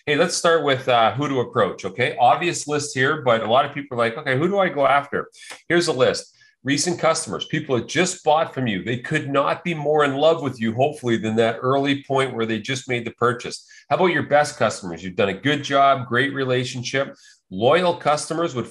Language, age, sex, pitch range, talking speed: English, 40-59, male, 110-145 Hz, 230 wpm